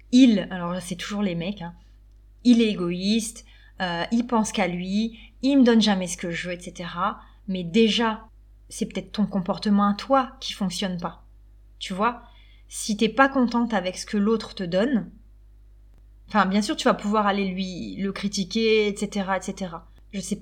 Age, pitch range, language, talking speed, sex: 20-39, 180-225 Hz, French, 190 wpm, female